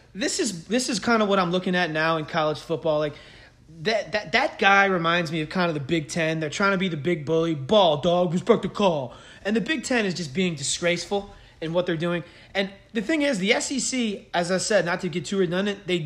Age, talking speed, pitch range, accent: 30-49, 250 wpm, 165-215 Hz, American